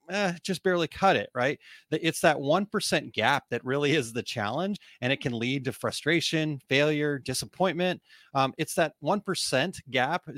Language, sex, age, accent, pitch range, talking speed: English, male, 30-49, American, 125-160 Hz, 160 wpm